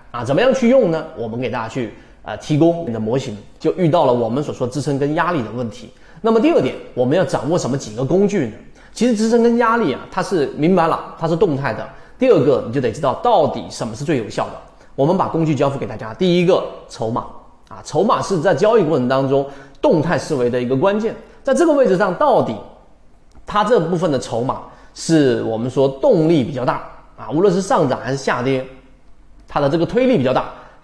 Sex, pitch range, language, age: male, 130-215 Hz, Chinese, 30-49